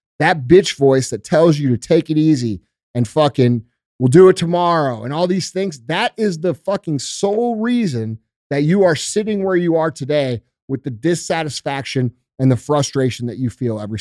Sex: male